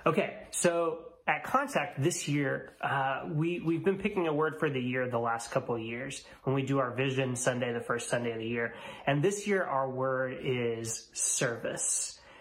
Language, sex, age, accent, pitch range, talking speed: English, male, 30-49, American, 125-155 Hz, 195 wpm